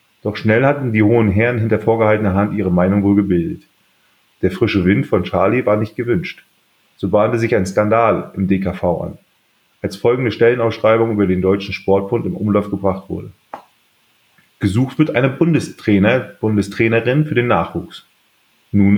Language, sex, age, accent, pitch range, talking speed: German, male, 30-49, German, 95-120 Hz, 155 wpm